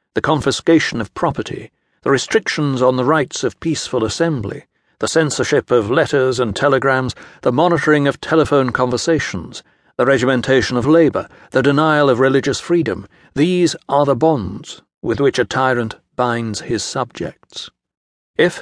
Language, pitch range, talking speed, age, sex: English, 120-145 Hz, 140 wpm, 60-79, male